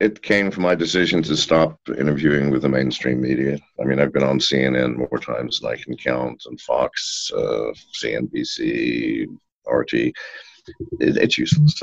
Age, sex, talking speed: 60-79, male, 160 wpm